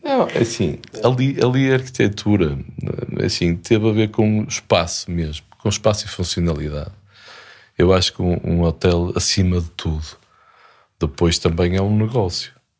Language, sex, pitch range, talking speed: Portuguese, male, 85-105 Hz, 145 wpm